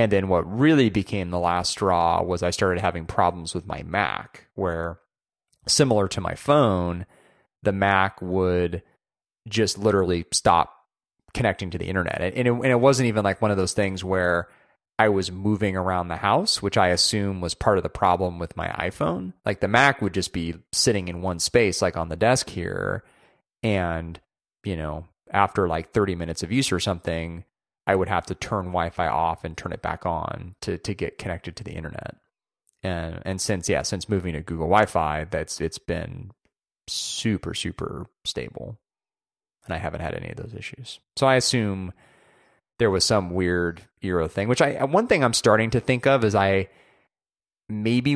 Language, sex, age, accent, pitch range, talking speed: English, male, 30-49, American, 90-110 Hz, 185 wpm